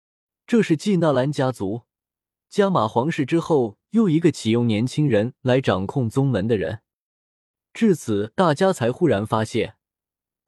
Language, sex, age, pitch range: Chinese, male, 20-39, 110-160 Hz